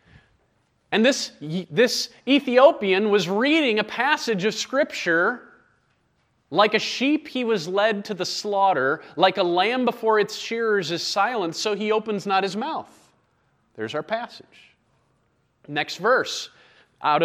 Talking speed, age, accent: 135 wpm, 30-49, American